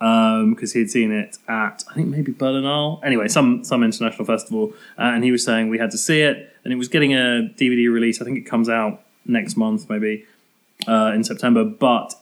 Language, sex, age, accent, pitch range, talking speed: English, male, 20-39, British, 115-165 Hz, 220 wpm